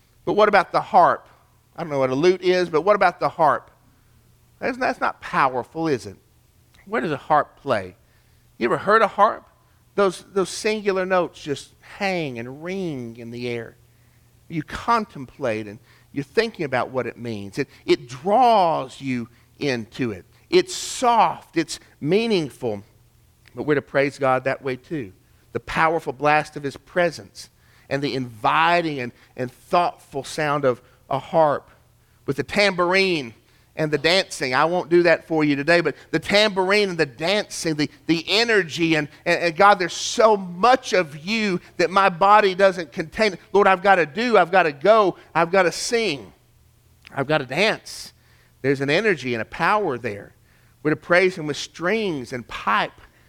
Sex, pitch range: male, 125-185 Hz